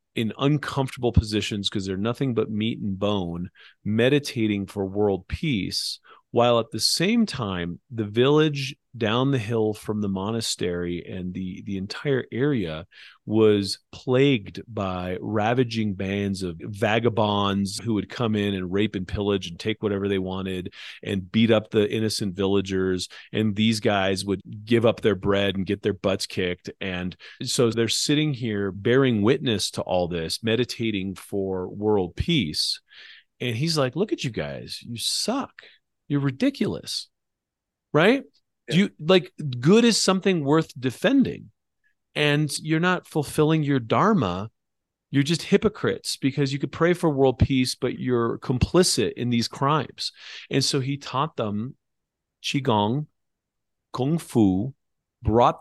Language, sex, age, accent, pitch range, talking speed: English, male, 40-59, American, 100-140 Hz, 145 wpm